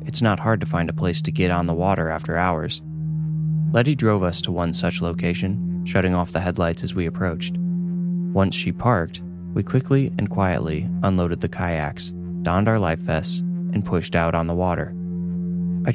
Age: 20-39